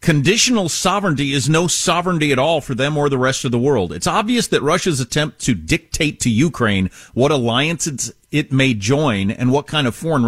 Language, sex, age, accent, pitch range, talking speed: English, male, 50-69, American, 125-180 Hz, 200 wpm